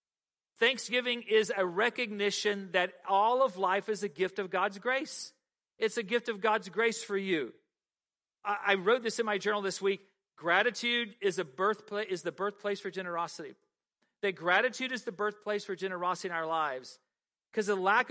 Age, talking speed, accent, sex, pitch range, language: 40-59, 170 wpm, American, male, 180-215 Hz, English